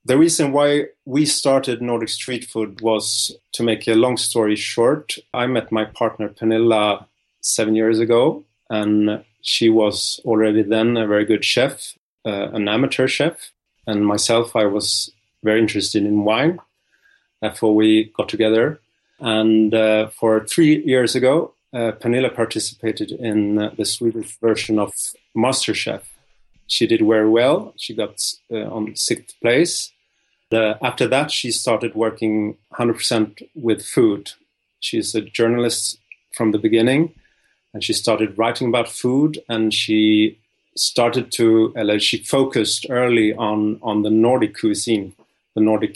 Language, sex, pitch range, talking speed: English, male, 110-115 Hz, 145 wpm